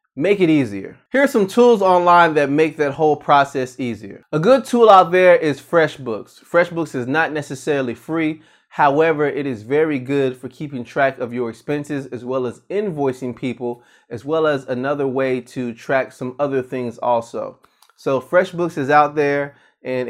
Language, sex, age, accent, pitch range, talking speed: English, male, 20-39, American, 125-155 Hz, 175 wpm